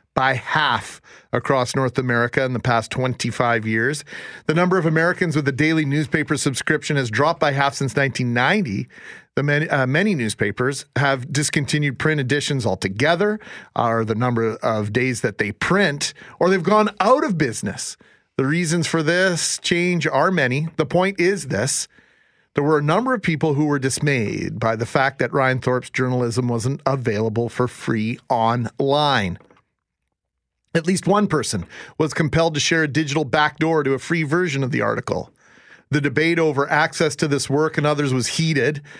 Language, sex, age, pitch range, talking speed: English, male, 40-59, 135-165 Hz, 170 wpm